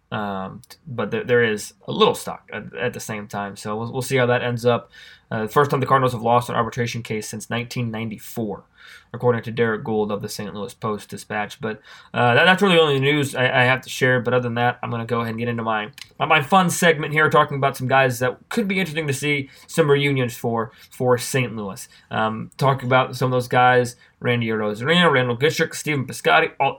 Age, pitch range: 20-39, 120-150 Hz